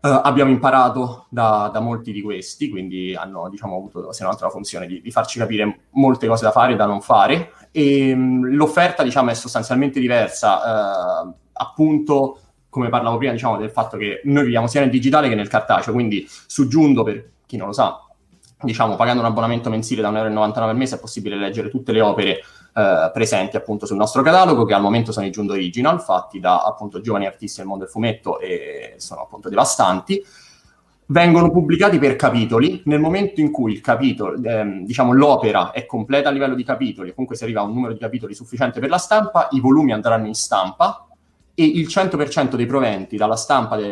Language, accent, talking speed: Italian, native, 195 wpm